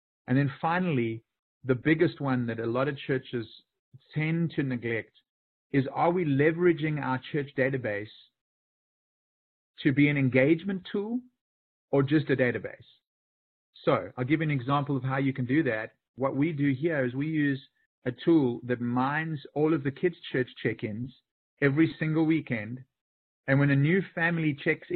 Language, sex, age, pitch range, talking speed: English, male, 40-59, 130-155 Hz, 165 wpm